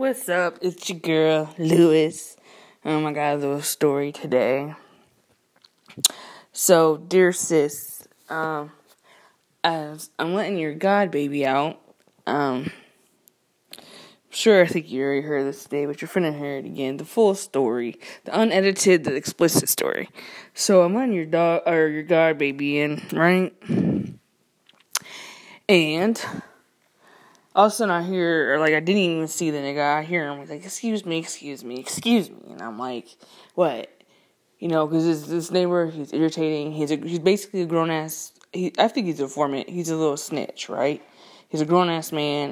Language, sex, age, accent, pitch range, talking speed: English, female, 20-39, American, 145-180 Hz, 170 wpm